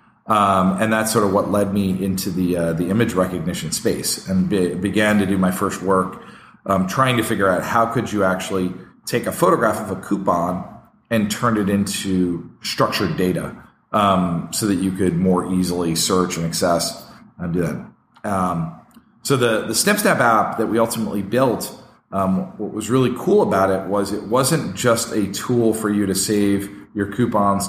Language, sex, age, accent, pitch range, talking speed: English, male, 40-59, American, 90-105 Hz, 185 wpm